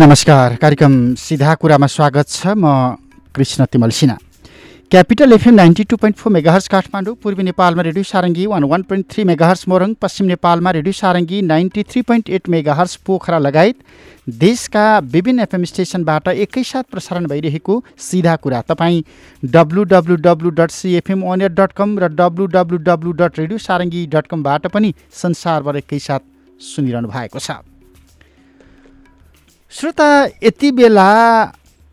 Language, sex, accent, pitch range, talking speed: English, male, Indian, 150-200 Hz, 75 wpm